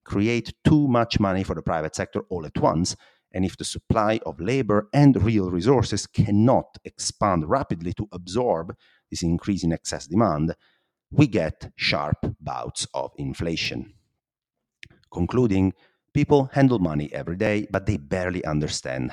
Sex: male